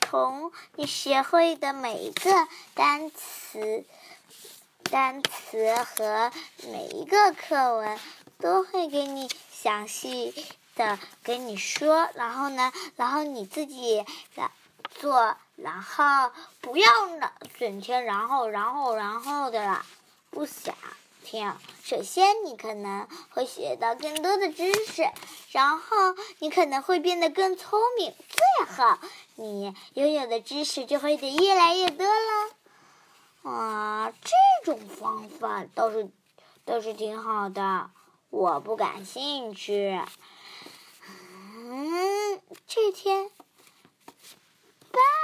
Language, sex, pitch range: Chinese, male, 220-360 Hz